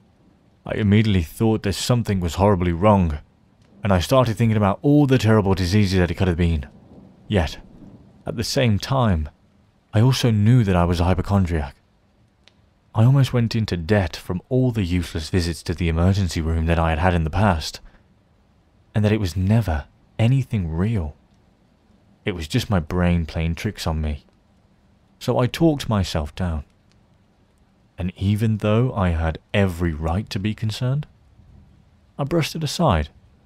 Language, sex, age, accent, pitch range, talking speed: English, male, 30-49, British, 85-110 Hz, 165 wpm